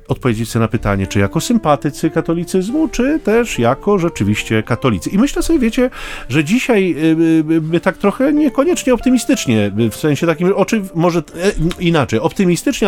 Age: 40-59